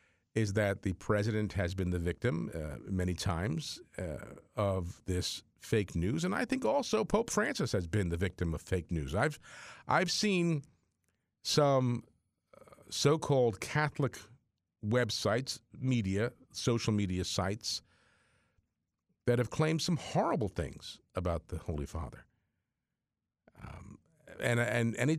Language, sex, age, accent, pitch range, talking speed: English, male, 50-69, American, 95-135 Hz, 130 wpm